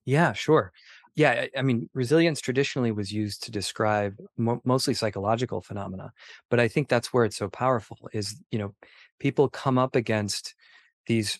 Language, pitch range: English, 105-125 Hz